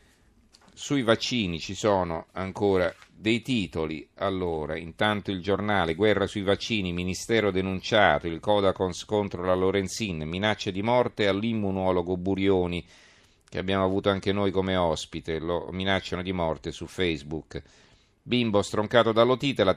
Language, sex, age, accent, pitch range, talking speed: Italian, male, 40-59, native, 85-105 Hz, 130 wpm